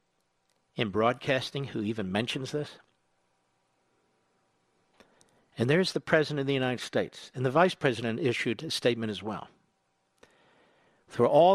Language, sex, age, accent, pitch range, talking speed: English, male, 60-79, American, 115-140 Hz, 130 wpm